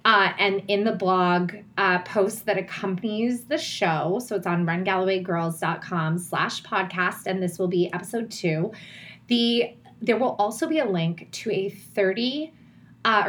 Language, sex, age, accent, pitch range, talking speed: English, female, 20-39, American, 180-230 Hz, 155 wpm